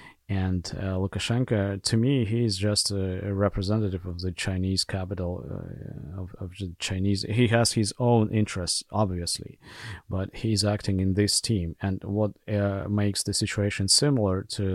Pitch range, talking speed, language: 95-105 Hz, 160 wpm, English